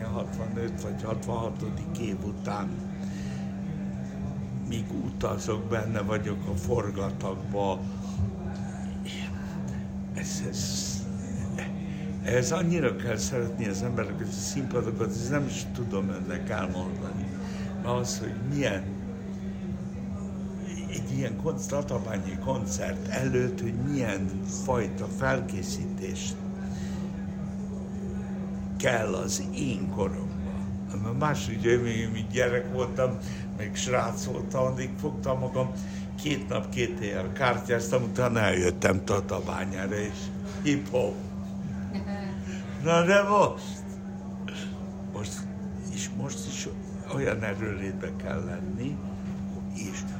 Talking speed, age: 95 wpm, 60-79